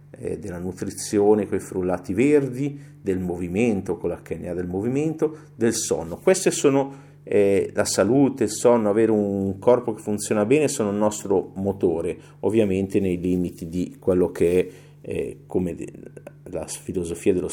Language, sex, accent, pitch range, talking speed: Italian, male, native, 95-135 Hz, 145 wpm